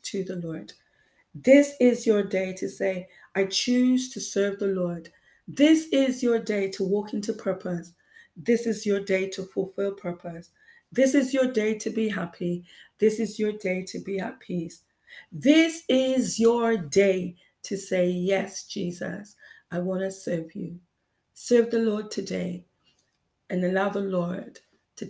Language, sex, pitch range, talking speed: English, female, 175-215 Hz, 160 wpm